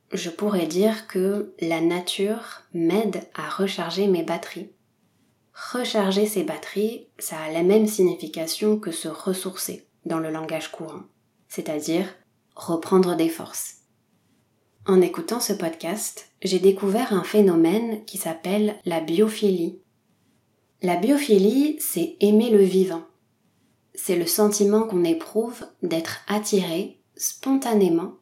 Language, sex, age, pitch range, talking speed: French, female, 20-39, 170-210 Hz, 120 wpm